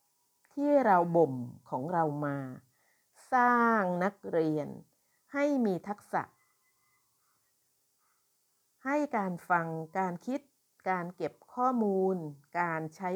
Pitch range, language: 160-230 Hz, Thai